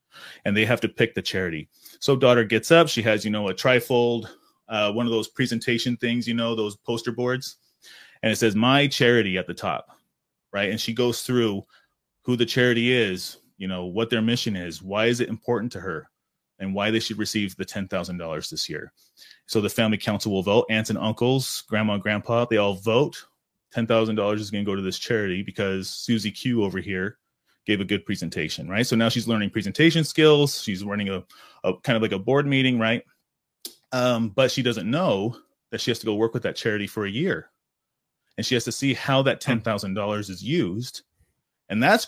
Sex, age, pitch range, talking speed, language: male, 30-49, 105-125 Hz, 210 wpm, English